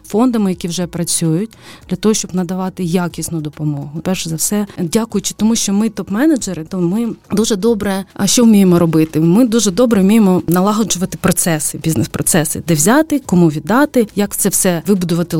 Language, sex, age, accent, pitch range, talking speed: Ukrainian, female, 30-49, native, 170-200 Hz, 160 wpm